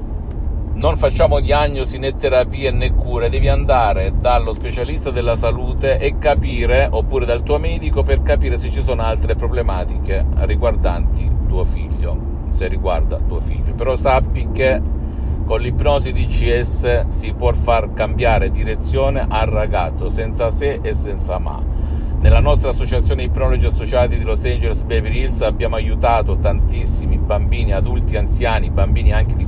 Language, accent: Italian, native